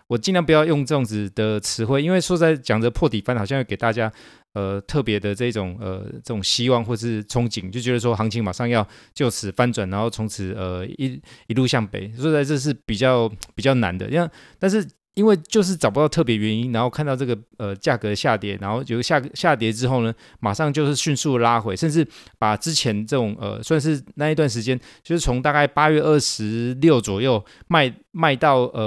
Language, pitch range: Chinese, 110-150 Hz